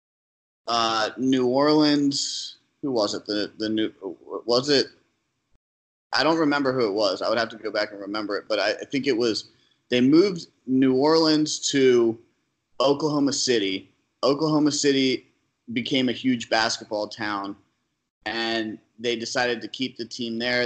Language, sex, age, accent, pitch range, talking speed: English, male, 30-49, American, 110-130 Hz, 155 wpm